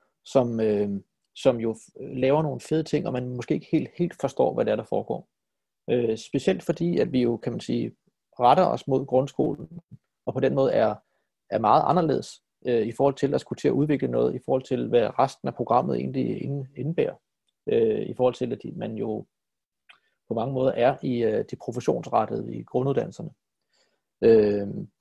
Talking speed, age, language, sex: 185 wpm, 30-49, Danish, male